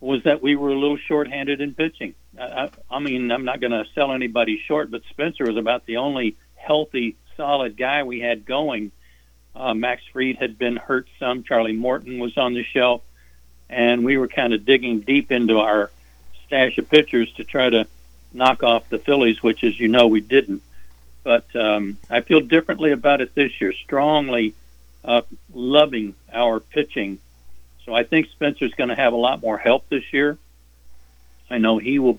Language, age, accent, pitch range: English, 60-79, American, 105-130 Hz